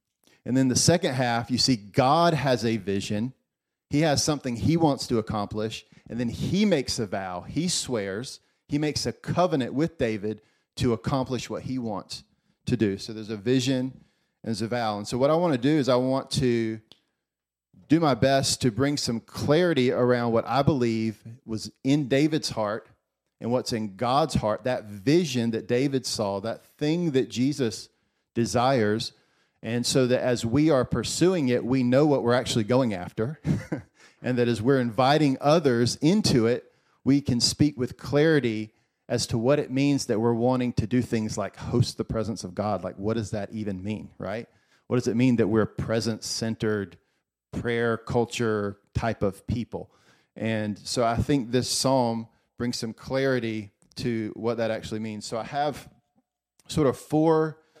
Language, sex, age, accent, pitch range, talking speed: English, male, 40-59, American, 110-135 Hz, 180 wpm